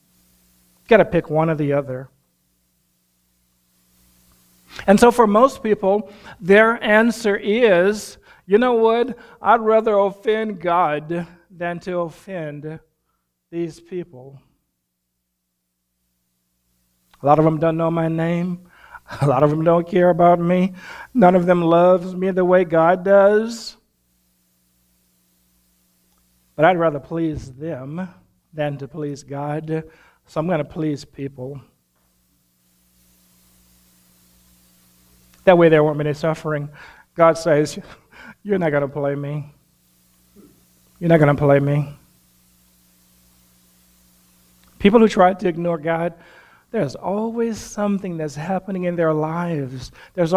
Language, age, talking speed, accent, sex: English, 50-69, 120 wpm, American, male